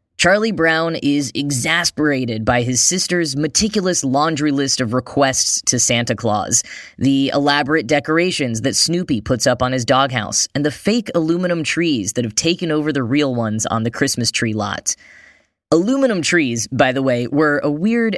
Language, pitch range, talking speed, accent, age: English, 120-155 Hz, 165 wpm, American, 10-29